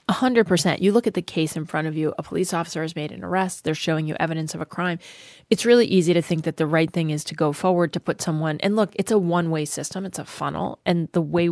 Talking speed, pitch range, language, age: 285 wpm, 155-185 Hz, English, 20-39